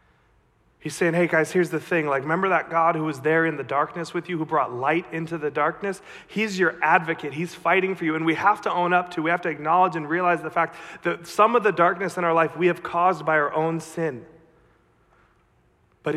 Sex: male